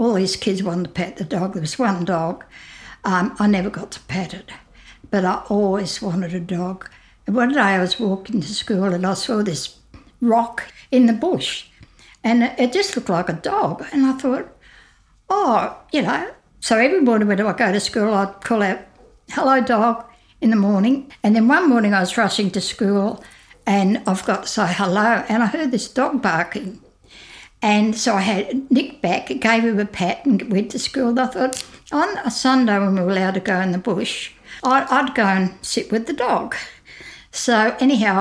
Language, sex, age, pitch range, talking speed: English, female, 60-79, 195-240 Hz, 205 wpm